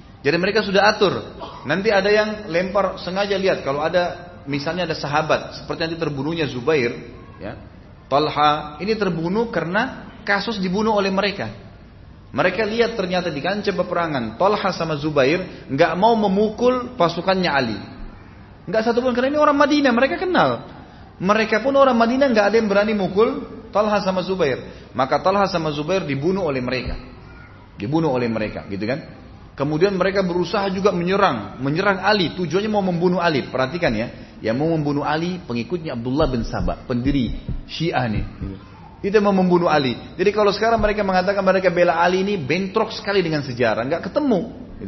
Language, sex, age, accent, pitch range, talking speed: Indonesian, male, 30-49, native, 130-200 Hz, 155 wpm